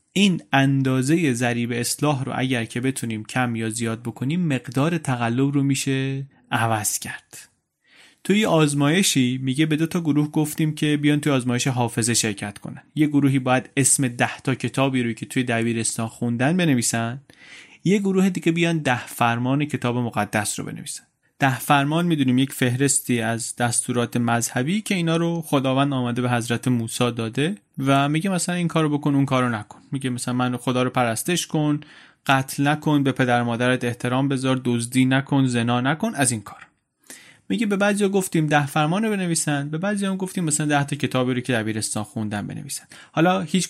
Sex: male